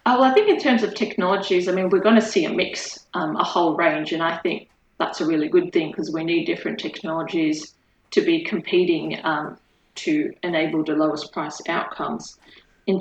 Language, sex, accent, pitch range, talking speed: English, female, Australian, 170-275 Hz, 205 wpm